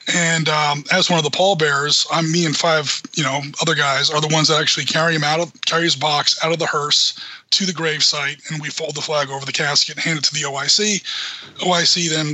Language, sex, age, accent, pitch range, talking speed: English, male, 20-39, American, 150-170 Hz, 235 wpm